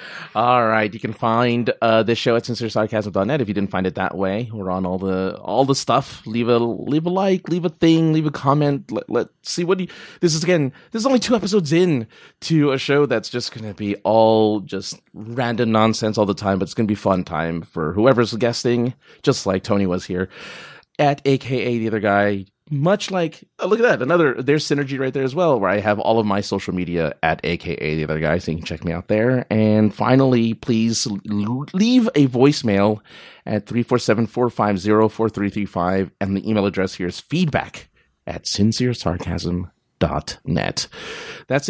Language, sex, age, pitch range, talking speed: English, male, 30-49, 100-135 Hz, 195 wpm